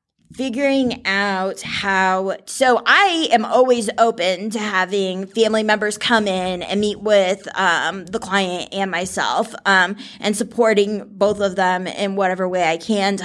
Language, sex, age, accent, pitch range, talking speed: English, female, 20-39, American, 180-210 Hz, 160 wpm